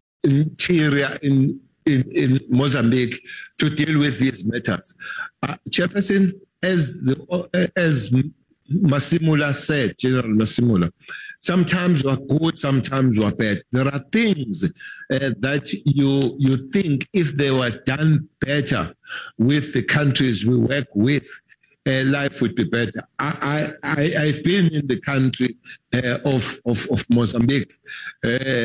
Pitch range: 130-165 Hz